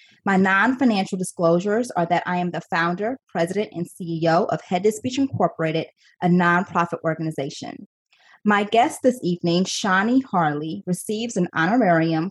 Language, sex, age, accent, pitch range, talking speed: English, female, 20-39, American, 170-225 Hz, 140 wpm